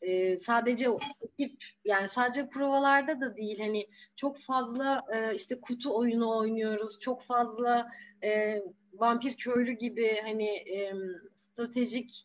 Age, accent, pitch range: 30-49, native, 205-240 Hz